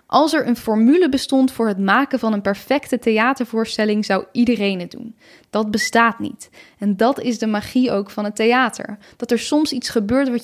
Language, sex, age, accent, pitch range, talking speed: Dutch, female, 10-29, Dutch, 215-260 Hz, 195 wpm